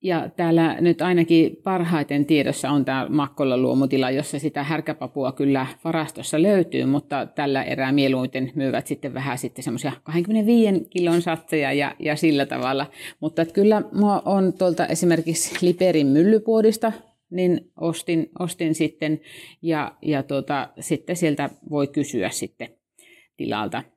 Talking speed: 130 wpm